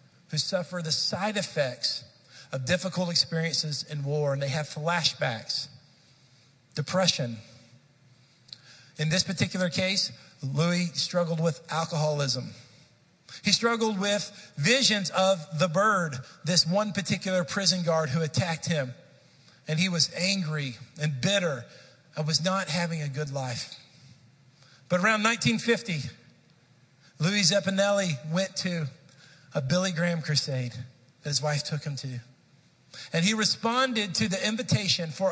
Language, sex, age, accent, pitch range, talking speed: English, male, 50-69, American, 145-195 Hz, 125 wpm